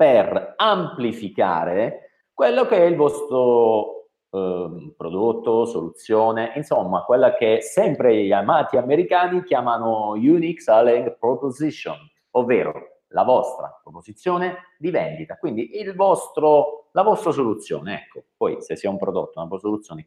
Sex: male